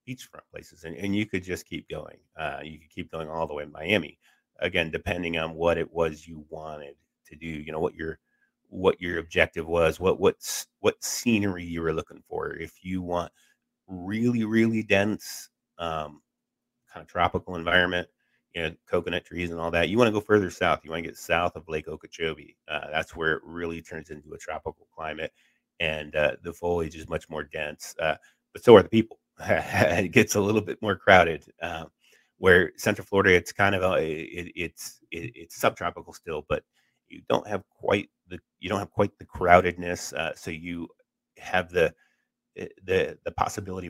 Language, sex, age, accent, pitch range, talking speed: English, male, 30-49, American, 80-100 Hz, 195 wpm